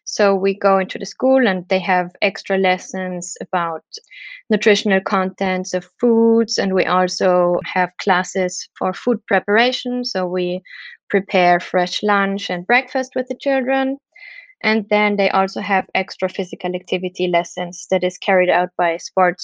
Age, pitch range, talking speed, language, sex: 20-39, 190-220 Hz, 150 wpm, English, female